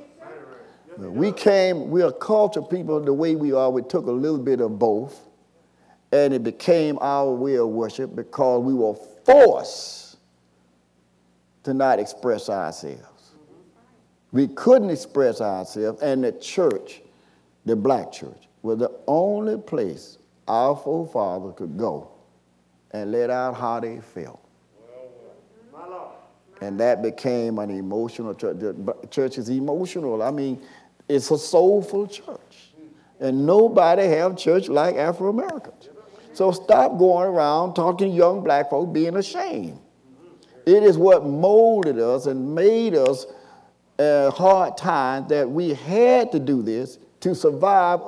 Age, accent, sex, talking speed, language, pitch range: 50-69, American, male, 130 wpm, English, 125-190 Hz